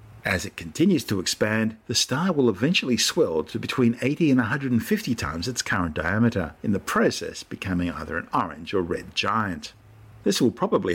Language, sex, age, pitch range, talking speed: English, male, 50-69, 95-125 Hz, 175 wpm